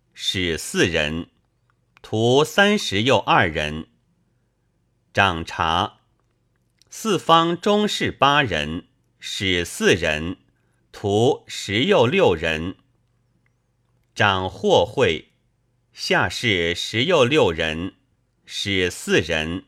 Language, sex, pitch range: Chinese, male, 85-130 Hz